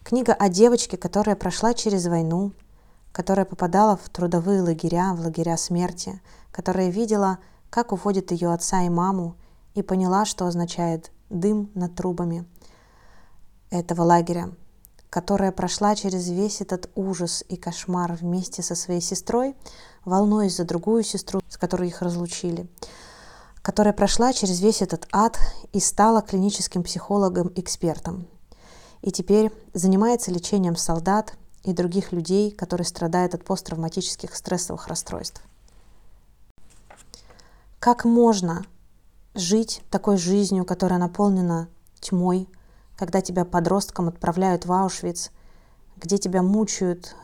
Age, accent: 20-39, native